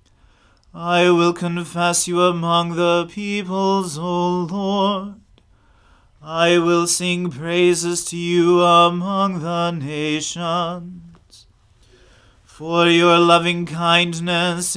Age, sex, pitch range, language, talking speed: 30-49, male, 165-175 Hz, English, 90 wpm